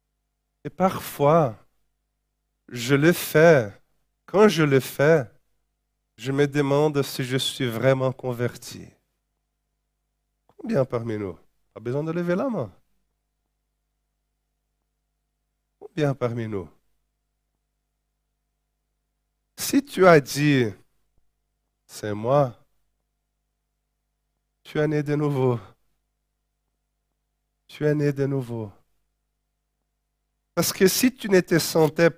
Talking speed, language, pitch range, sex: 95 wpm, French, 125-175 Hz, male